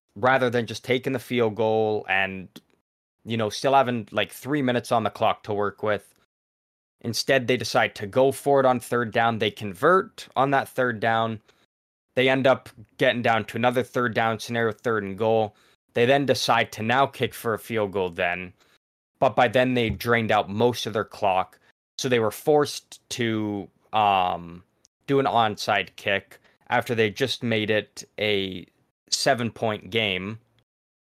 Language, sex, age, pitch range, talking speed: English, male, 20-39, 105-125 Hz, 175 wpm